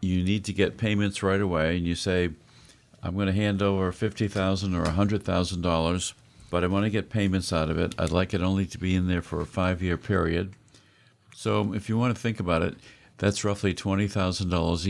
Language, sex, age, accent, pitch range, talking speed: English, male, 50-69, American, 85-105 Hz, 195 wpm